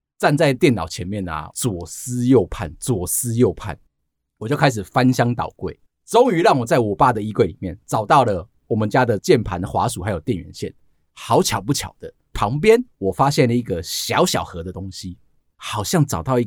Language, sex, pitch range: Chinese, male, 105-155 Hz